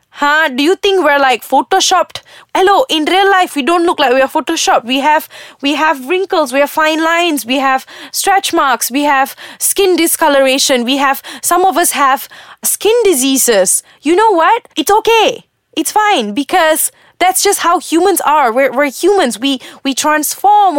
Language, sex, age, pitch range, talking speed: English, female, 20-39, 260-360 Hz, 180 wpm